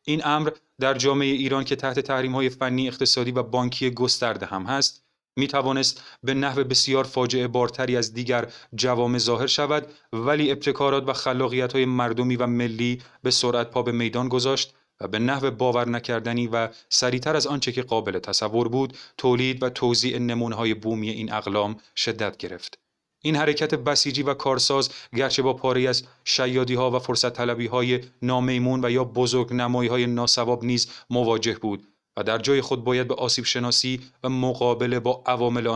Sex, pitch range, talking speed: male, 120-135 Hz, 160 wpm